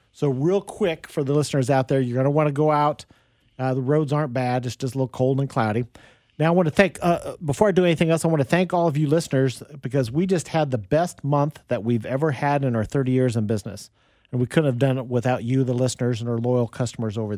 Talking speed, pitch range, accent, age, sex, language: 270 wpm, 125-150 Hz, American, 40-59, male, English